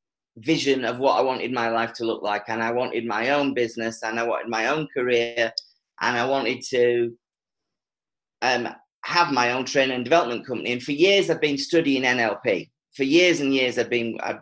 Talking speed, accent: 200 wpm, British